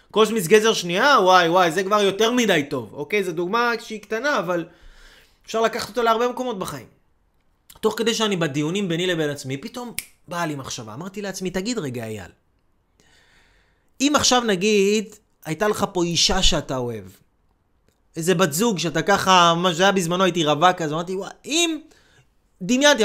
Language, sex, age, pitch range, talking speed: Hebrew, male, 30-49, 155-240 Hz, 165 wpm